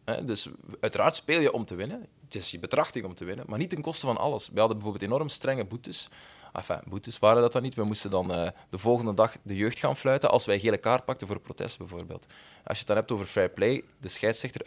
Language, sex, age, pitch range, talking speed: Dutch, male, 20-39, 105-135 Hz, 260 wpm